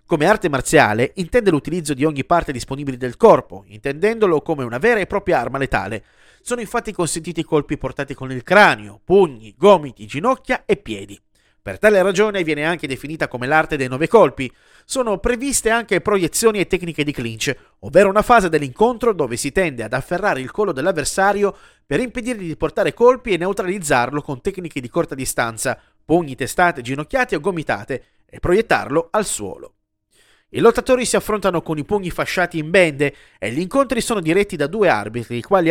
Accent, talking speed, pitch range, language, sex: native, 175 wpm, 130-200 Hz, Italian, male